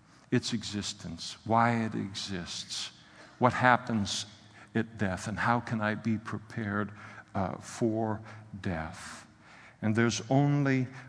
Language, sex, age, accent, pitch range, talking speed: English, male, 60-79, American, 105-115 Hz, 115 wpm